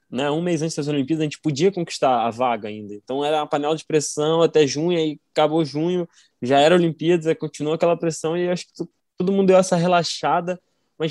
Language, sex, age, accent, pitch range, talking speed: Portuguese, male, 10-29, Brazilian, 125-170 Hz, 220 wpm